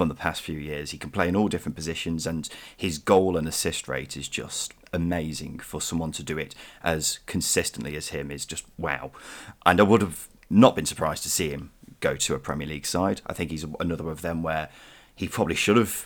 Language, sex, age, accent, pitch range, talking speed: English, male, 30-49, British, 75-95 Hz, 225 wpm